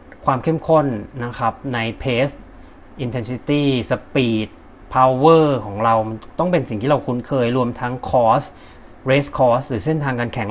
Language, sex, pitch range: Thai, male, 120-150 Hz